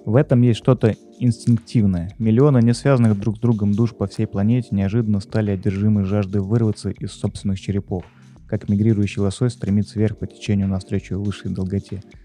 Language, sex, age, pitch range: Russian, male, 20-39, 100-120 Hz